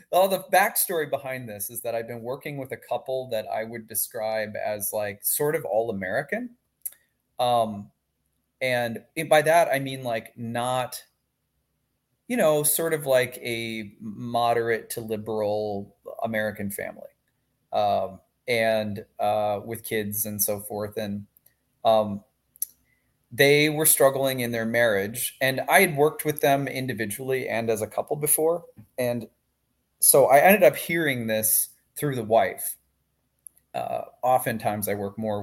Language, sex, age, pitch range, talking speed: English, male, 30-49, 110-140 Hz, 145 wpm